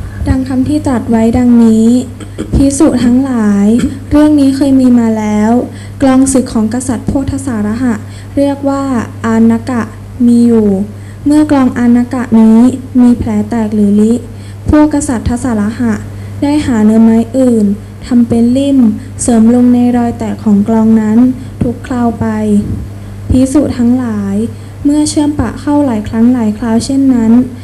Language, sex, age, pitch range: English, female, 10-29, 210-255 Hz